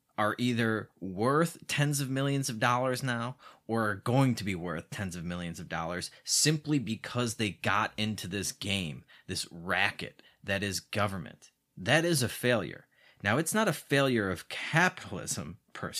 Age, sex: 30-49, male